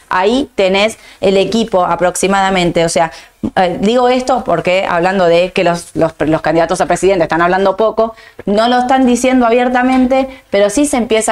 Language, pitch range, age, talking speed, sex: Spanish, 180-220 Hz, 20-39, 165 wpm, female